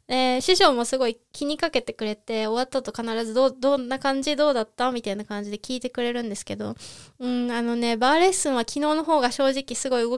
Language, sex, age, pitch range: Japanese, female, 20-39, 220-275 Hz